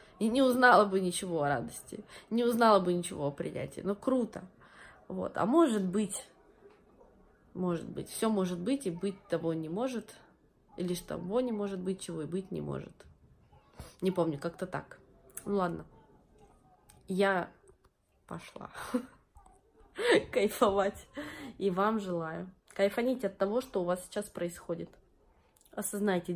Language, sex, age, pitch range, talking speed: Russian, female, 20-39, 180-235 Hz, 140 wpm